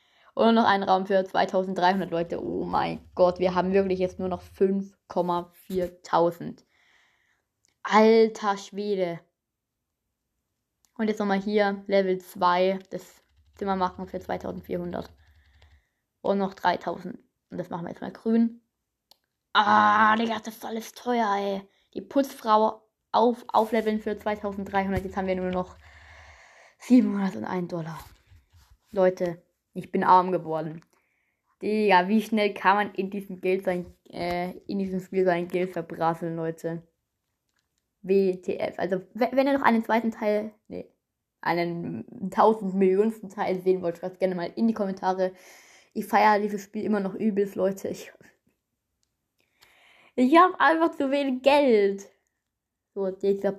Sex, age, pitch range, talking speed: female, 20-39, 180-215 Hz, 135 wpm